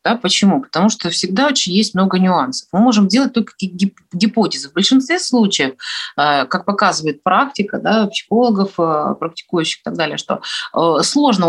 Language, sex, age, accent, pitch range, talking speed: Russian, female, 30-49, native, 170-225 Hz, 150 wpm